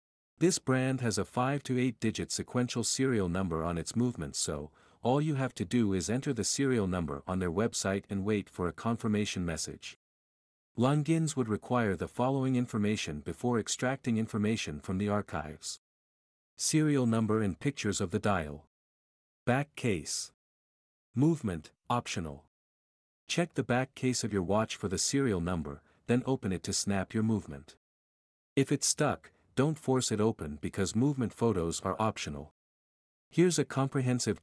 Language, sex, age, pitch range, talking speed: English, male, 50-69, 95-125 Hz, 155 wpm